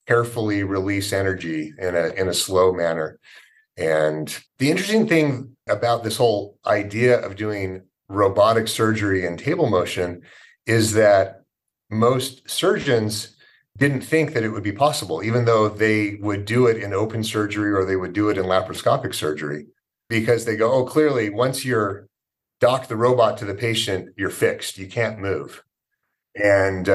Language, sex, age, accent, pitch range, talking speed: English, male, 40-59, American, 95-120 Hz, 160 wpm